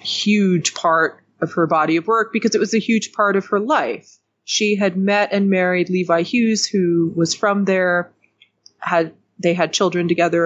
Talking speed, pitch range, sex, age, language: 185 wpm, 170-210 Hz, female, 30-49, English